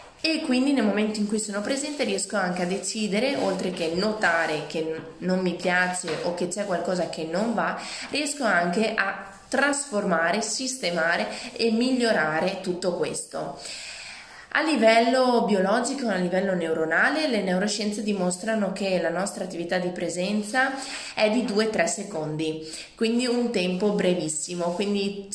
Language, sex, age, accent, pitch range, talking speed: Italian, female, 20-39, native, 175-225 Hz, 140 wpm